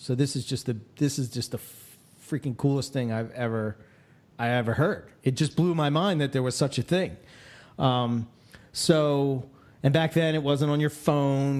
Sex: male